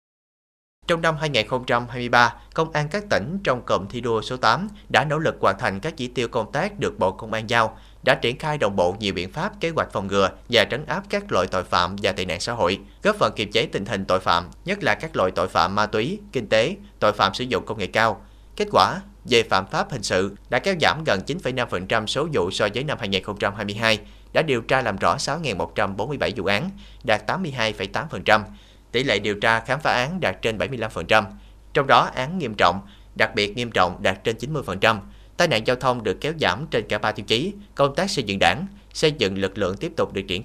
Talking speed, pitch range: 225 wpm, 100-125 Hz